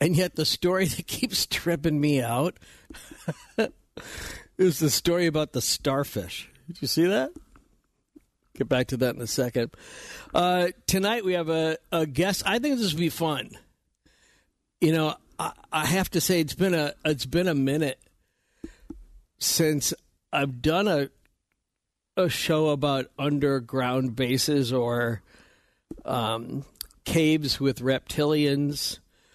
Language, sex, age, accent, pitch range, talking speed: English, male, 60-79, American, 130-175 Hz, 135 wpm